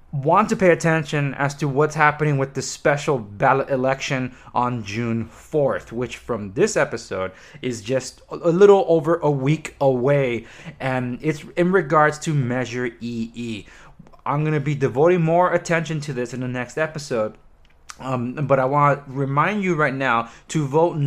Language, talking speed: English, 170 wpm